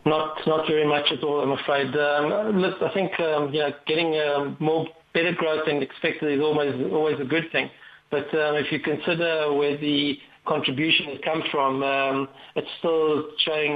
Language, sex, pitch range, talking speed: English, male, 145-160 Hz, 180 wpm